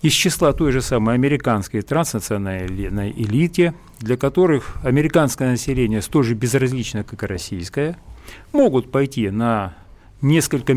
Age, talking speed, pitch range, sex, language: 40-59, 125 wpm, 105-145 Hz, male, Russian